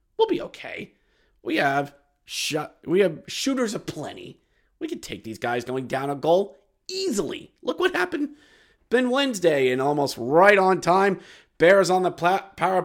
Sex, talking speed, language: male, 170 wpm, English